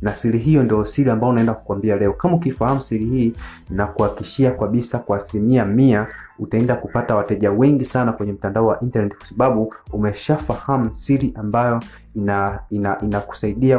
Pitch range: 105-125 Hz